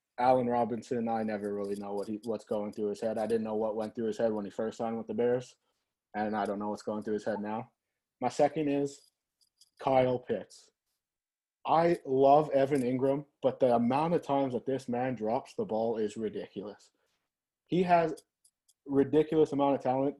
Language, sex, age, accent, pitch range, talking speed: English, male, 20-39, American, 115-135 Hz, 195 wpm